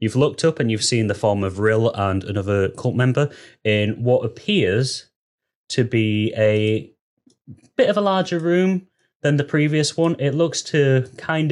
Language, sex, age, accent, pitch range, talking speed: English, male, 10-29, British, 100-125 Hz, 170 wpm